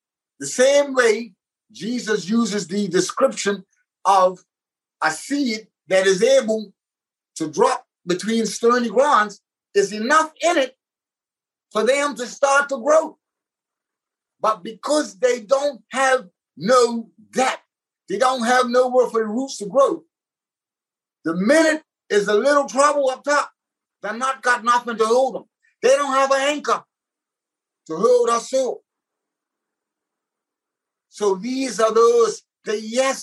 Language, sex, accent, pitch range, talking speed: English, male, American, 210-265 Hz, 135 wpm